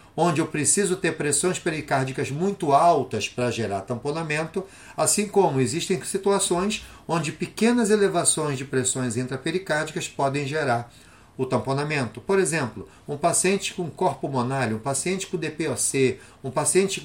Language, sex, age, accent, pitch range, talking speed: Portuguese, male, 40-59, Brazilian, 130-185 Hz, 135 wpm